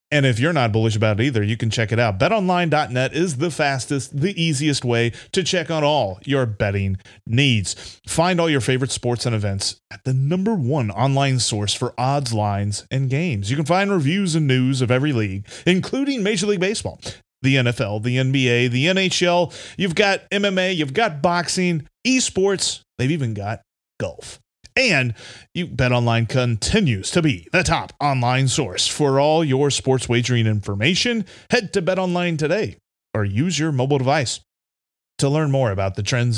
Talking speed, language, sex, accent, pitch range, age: 180 wpm, English, male, American, 115-175 Hz, 30-49